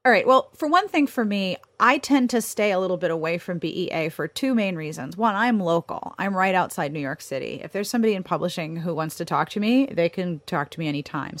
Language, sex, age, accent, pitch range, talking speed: English, female, 30-49, American, 170-245 Hz, 255 wpm